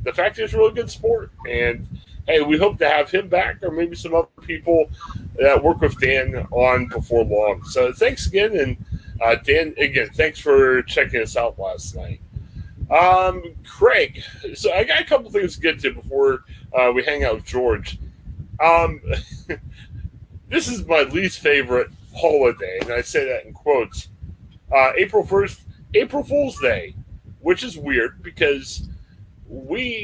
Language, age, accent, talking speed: English, 40-59, American, 160 wpm